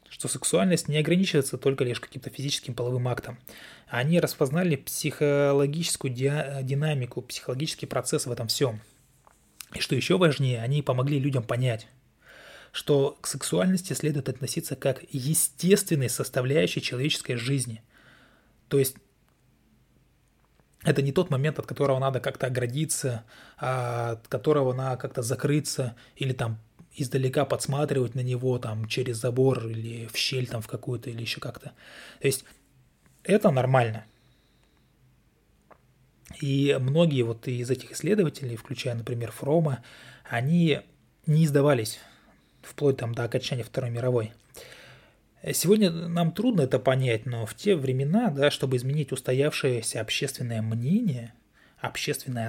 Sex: male